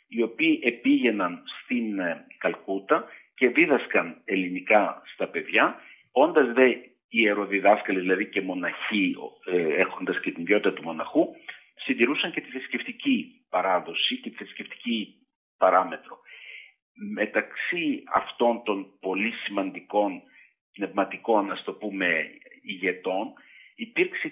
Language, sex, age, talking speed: Greek, male, 50-69, 105 wpm